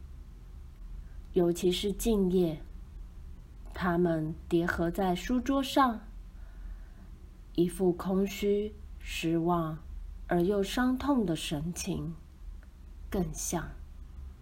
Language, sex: Chinese, female